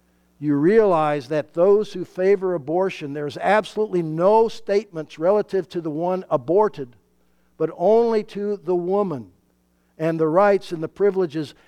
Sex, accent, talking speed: male, American, 140 wpm